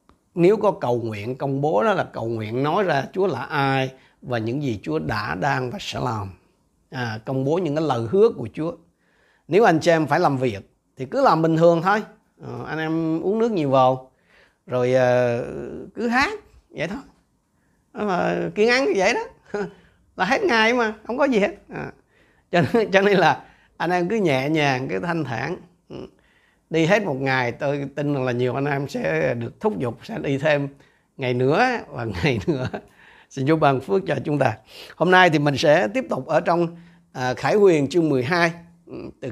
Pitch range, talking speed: 130-185 Hz, 195 wpm